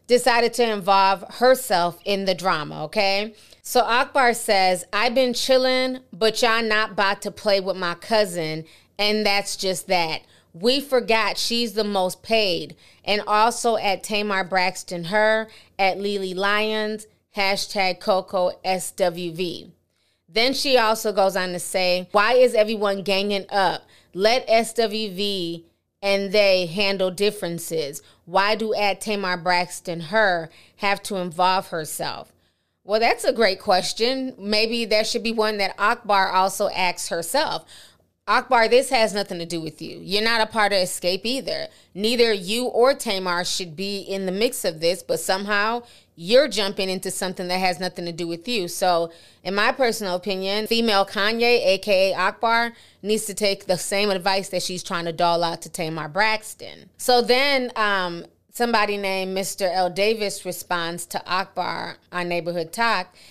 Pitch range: 180-220 Hz